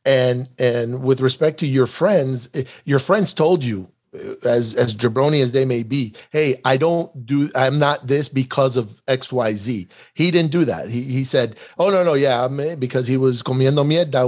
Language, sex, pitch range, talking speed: English, male, 125-150 Hz, 200 wpm